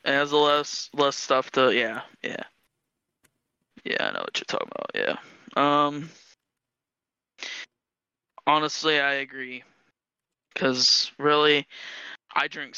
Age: 20-39